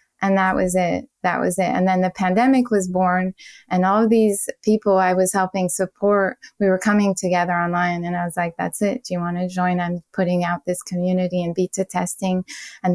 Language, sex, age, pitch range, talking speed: English, female, 20-39, 180-200 Hz, 215 wpm